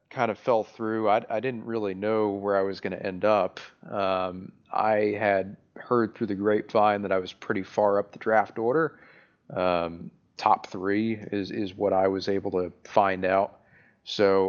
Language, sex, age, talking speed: English, male, 40-59, 185 wpm